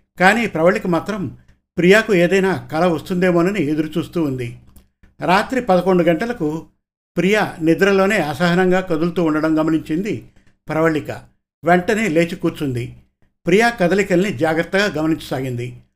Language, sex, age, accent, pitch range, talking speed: Telugu, male, 50-69, native, 150-185 Hz, 100 wpm